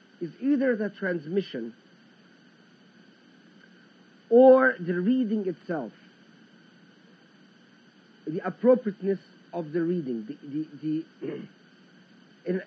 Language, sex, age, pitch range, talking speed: English, male, 50-69, 185-225 Hz, 80 wpm